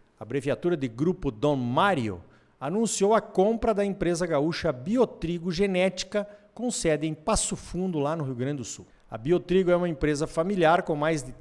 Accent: Brazilian